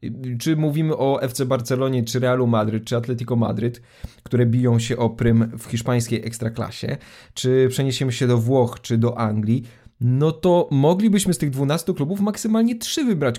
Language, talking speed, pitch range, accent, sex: Polish, 165 wpm, 125-180 Hz, native, male